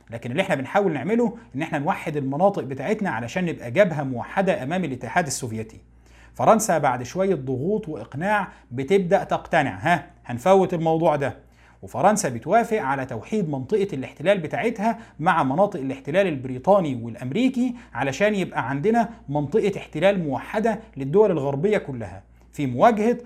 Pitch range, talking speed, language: 135-205 Hz, 130 wpm, Arabic